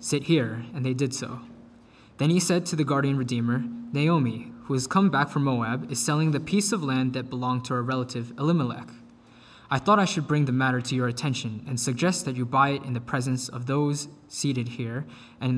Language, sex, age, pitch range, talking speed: English, male, 20-39, 125-150 Hz, 220 wpm